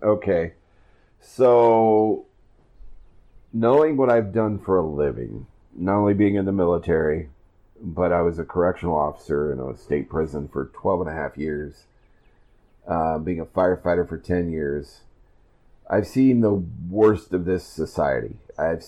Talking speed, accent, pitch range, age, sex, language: 145 wpm, American, 85-100 Hz, 40-59, male, English